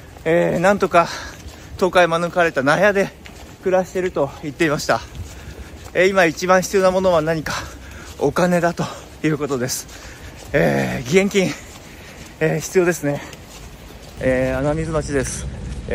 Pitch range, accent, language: 120-160 Hz, native, Japanese